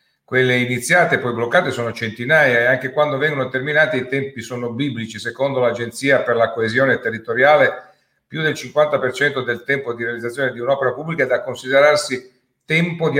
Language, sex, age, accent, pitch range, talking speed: Italian, male, 50-69, native, 110-140 Hz, 170 wpm